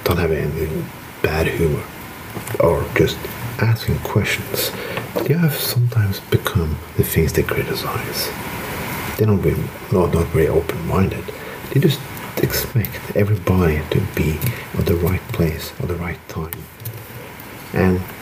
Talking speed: 140 wpm